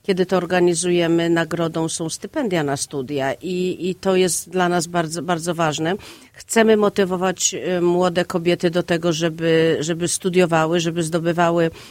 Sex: female